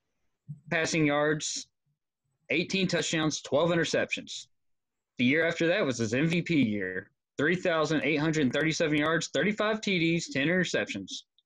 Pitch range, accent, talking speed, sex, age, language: 145-225 Hz, American, 105 wpm, male, 20-39, English